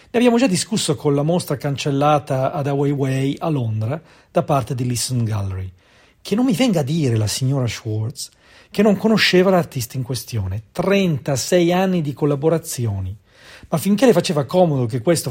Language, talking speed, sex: Italian, 170 wpm, male